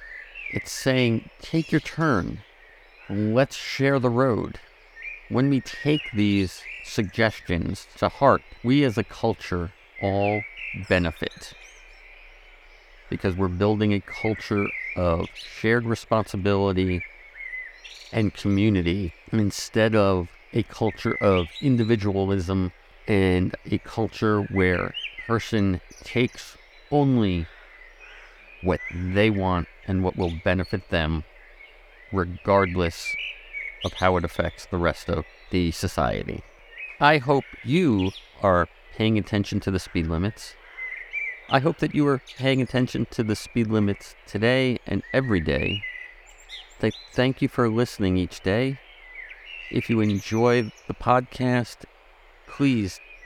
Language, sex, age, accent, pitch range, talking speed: English, male, 50-69, American, 95-125 Hz, 115 wpm